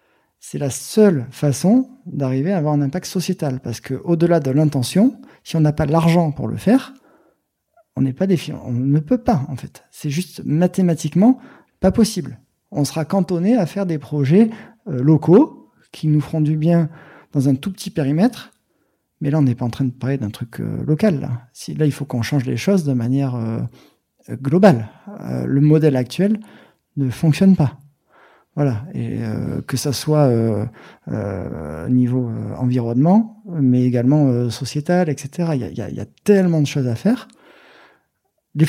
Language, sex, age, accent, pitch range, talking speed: French, male, 40-59, French, 130-180 Hz, 180 wpm